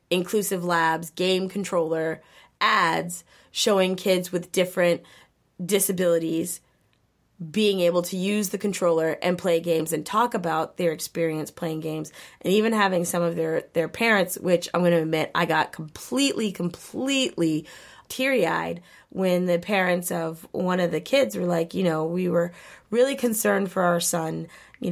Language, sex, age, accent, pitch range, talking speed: English, female, 20-39, American, 170-225 Hz, 155 wpm